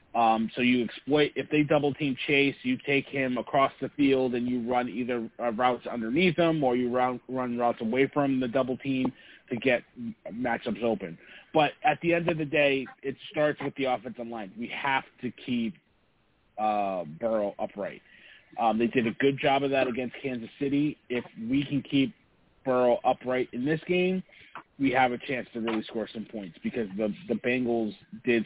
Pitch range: 120-150 Hz